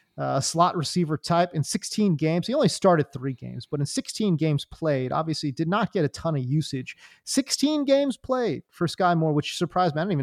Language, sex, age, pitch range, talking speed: English, male, 30-49, 150-195 Hz, 225 wpm